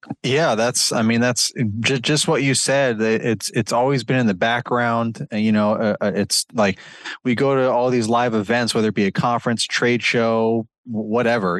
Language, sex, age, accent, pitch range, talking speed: English, male, 20-39, American, 105-120 Hz, 195 wpm